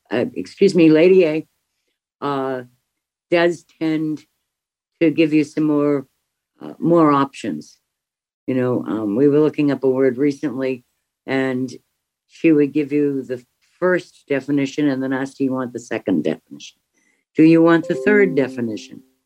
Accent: American